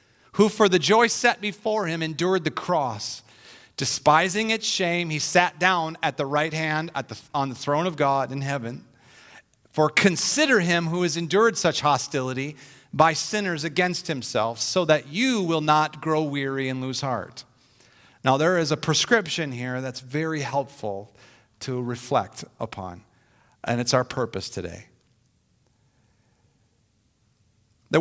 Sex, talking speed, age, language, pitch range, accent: male, 145 wpm, 40-59, English, 130-190 Hz, American